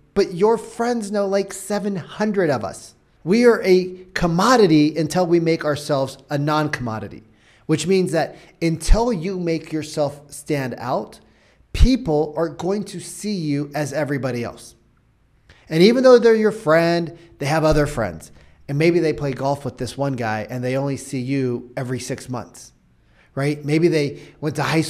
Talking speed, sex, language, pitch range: 165 wpm, male, English, 125-165 Hz